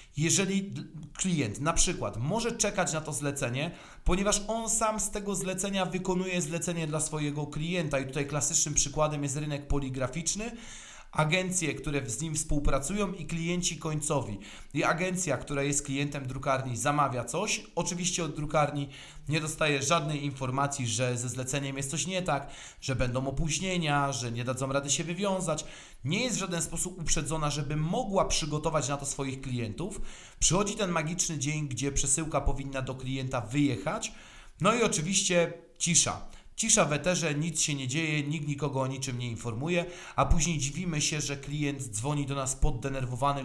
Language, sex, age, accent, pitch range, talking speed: Polish, male, 40-59, native, 140-170 Hz, 160 wpm